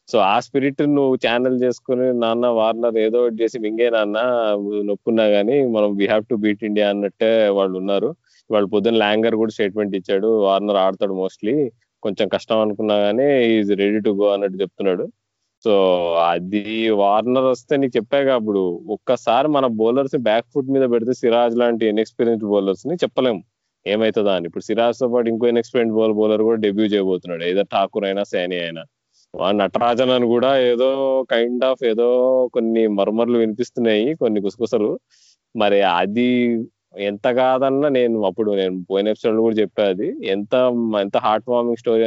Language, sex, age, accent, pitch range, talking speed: Telugu, male, 20-39, native, 100-120 Hz, 150 wpm